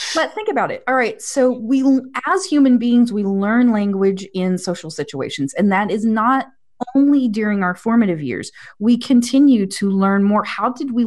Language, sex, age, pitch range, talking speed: English, female, 30-49, 180-240 Hz, 185 wpm